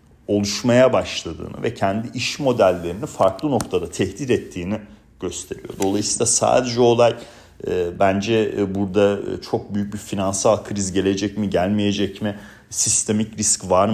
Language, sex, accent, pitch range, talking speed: Turkish, male, native, 95-120 Hz, 120 wpm